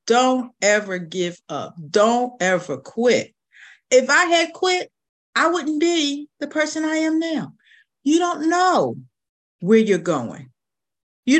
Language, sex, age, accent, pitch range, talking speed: English, female, 50-69, American, 160-265 Hz, 135 wpm